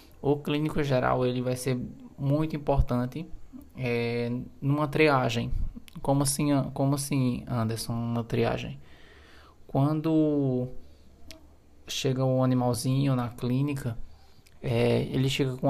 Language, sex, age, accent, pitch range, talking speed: Portuguese, male, 20-39, Brazilian, 120-140 Hz, 95 wpm